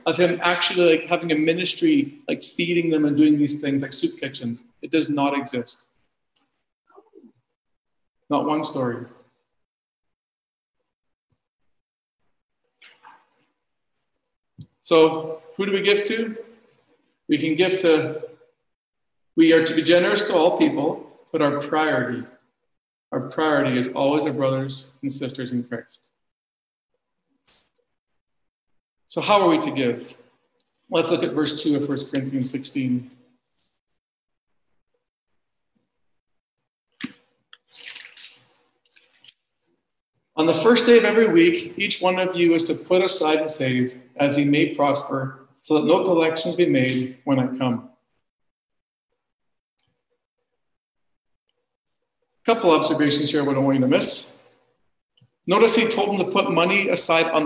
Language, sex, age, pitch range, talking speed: English, male, 40-59, 140-200 Hz, 125 wpm